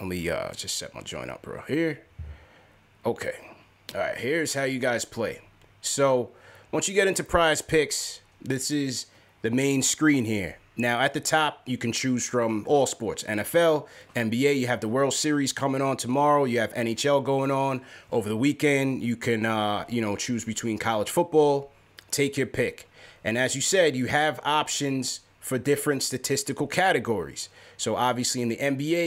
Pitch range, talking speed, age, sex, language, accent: 115-145 Hz, 180 wpm, 30-49, male, English, American